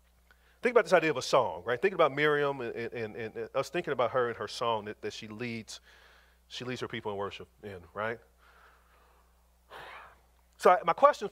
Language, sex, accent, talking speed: English, male, American, 200 wpm